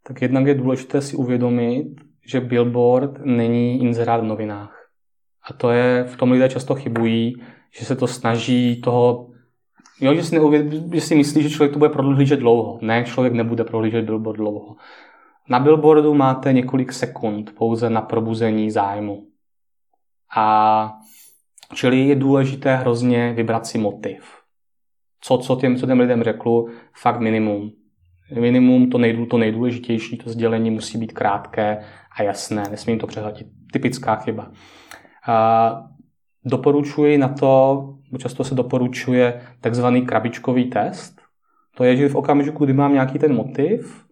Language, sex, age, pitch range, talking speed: Czech, male, 20-39, 115-135 Hz, 145 wpm